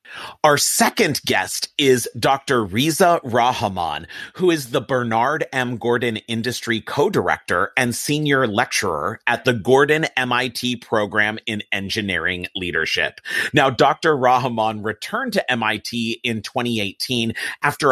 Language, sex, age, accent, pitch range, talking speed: English, male, 30-49, American, 110-135 Hz, 115 wpm